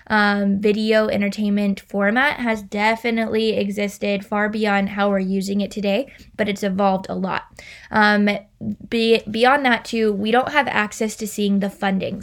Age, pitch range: 20-39, 200-225 Hz